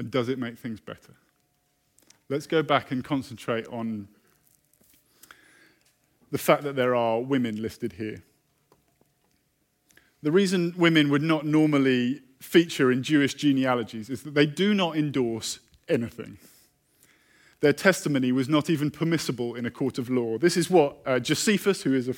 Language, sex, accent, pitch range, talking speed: English, male, British, 130-170 Hz, 150 wpm